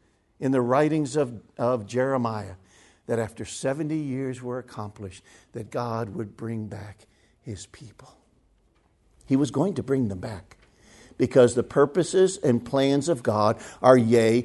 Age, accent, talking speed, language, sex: 50-69, American, 145 wpm, English, male